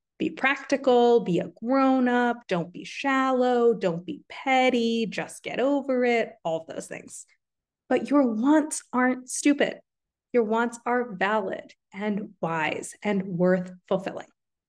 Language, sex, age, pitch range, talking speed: English, female, 20-39, 190-255 Hz, 140 wpm